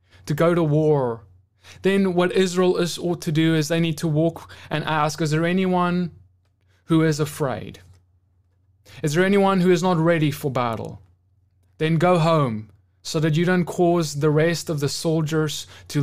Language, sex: English, male